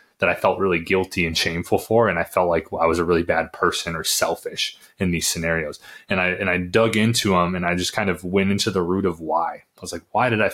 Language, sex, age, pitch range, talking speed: English, male, 20-39, 90-105 Hz, 270 wpm